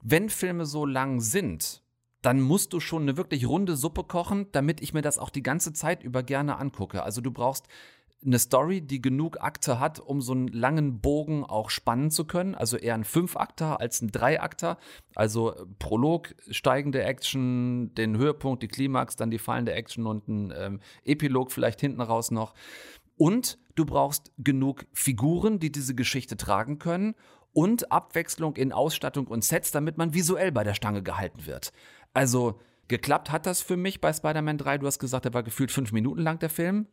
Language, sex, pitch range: German, male, 120-155 Hz